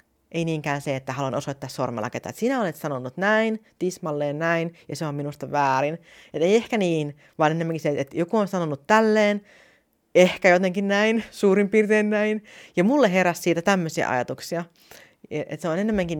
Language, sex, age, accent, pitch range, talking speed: Finnish, female, 40-59, native, 130-180 Hz, 170 wpm